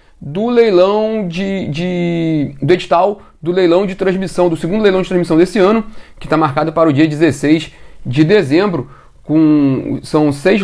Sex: male